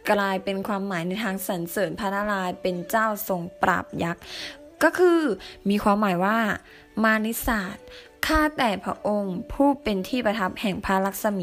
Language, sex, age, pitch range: Thai, female, 20-39, 190-255 Hz